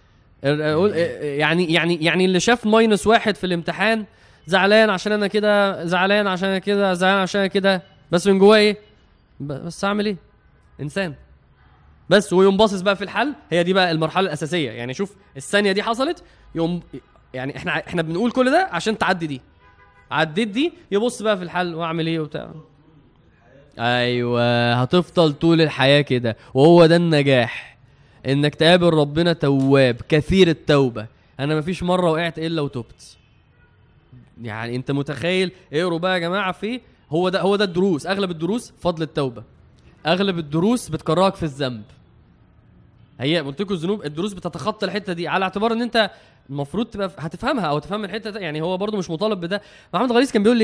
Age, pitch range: 20-39, 145-205 Hz